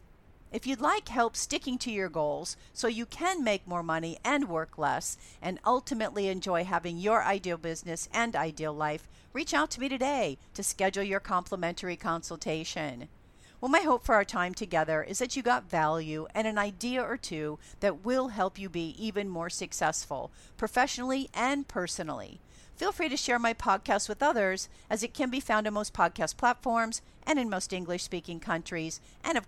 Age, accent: 50-69, American